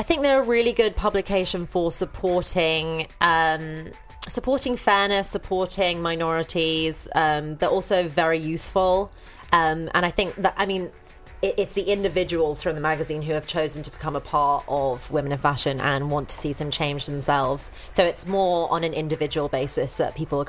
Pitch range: 150-180 Hz